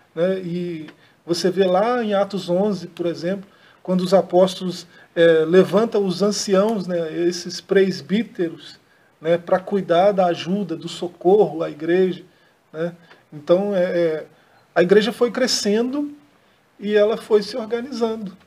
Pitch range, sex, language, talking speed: 175-200 Hz, male, Portuguese, 130 wpm